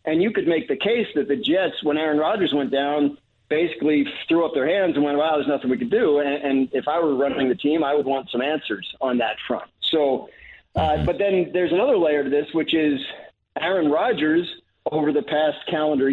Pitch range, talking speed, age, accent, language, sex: 135-165 Hz, 225 wpm, 40-59, American, English, male